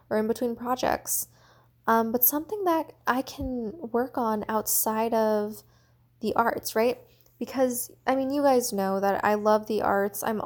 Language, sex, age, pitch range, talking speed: English, female, 10-29, 205-250 Hz, 165 wpm